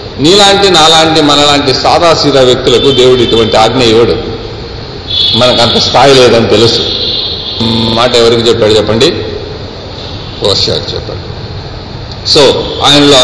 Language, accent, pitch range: Telugu, native, 105-135 Hz